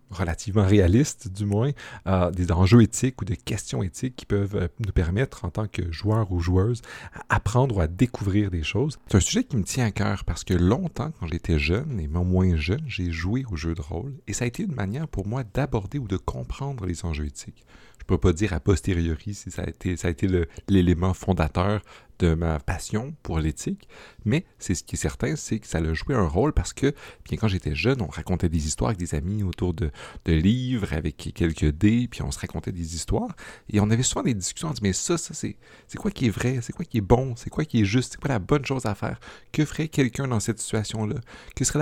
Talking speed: 245 wpm